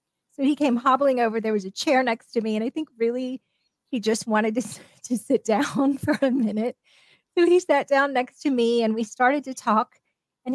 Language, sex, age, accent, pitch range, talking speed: English, female, 30-49, American, 210-255 Hz, 220 wpm